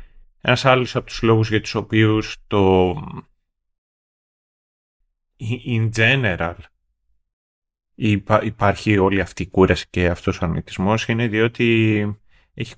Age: 30-49